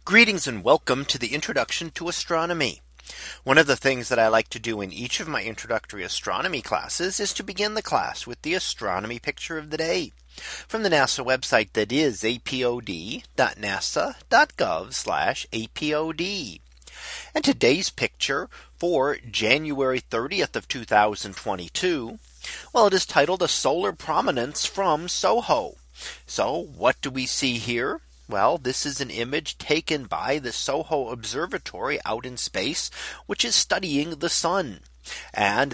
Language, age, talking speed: English, 40-59, 145 wpm